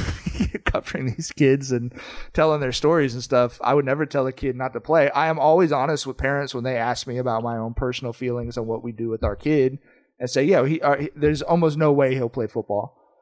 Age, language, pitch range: 30-49, English, 130-170 Hz